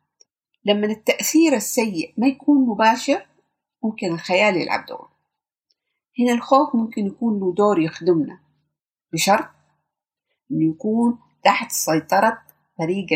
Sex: female